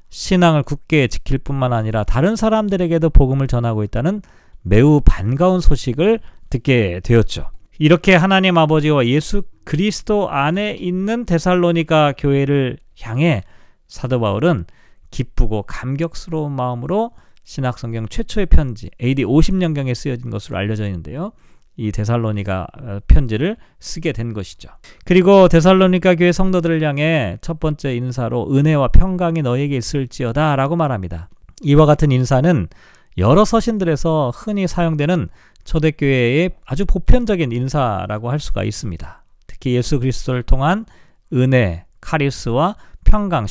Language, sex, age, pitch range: Korean, male, 40-59, 120-175 Hz